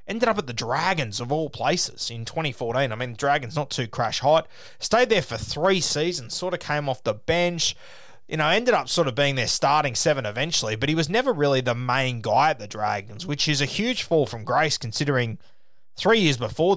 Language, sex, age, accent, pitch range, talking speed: English, male, 20-39, Australian, 125-165 Hz, 220 wpm